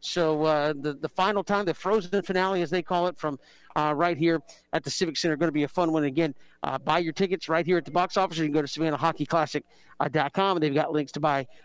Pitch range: 150-190 Hz